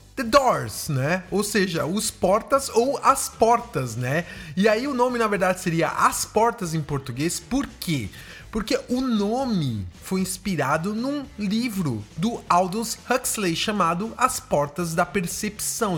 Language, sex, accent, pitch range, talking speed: English, male, Brazilian, 170-230 Hz, 145 wpm